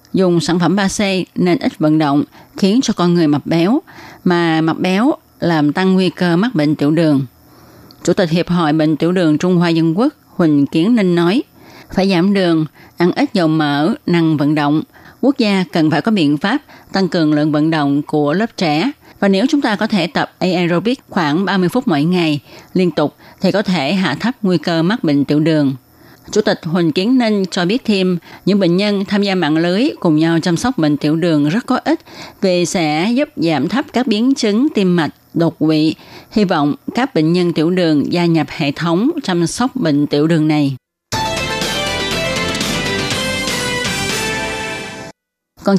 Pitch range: 155-200 Hz